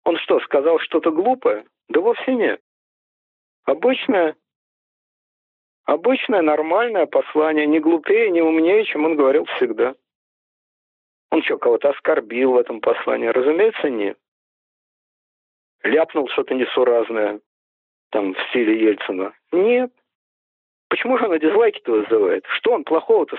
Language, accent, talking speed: Russian, native, 115 wpm